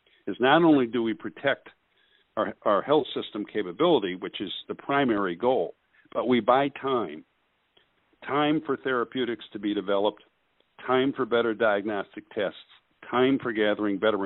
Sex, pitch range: male, 105-135 Hz